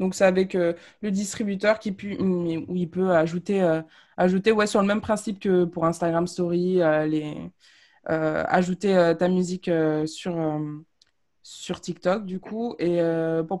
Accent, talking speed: French, 175 wpm